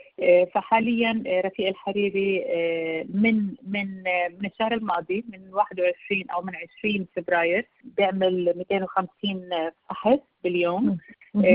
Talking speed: 90 wpm